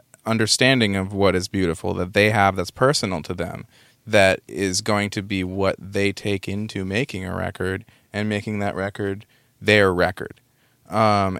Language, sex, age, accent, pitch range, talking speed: English, male, 20-39, American, 95-115 Hz, 165 wpm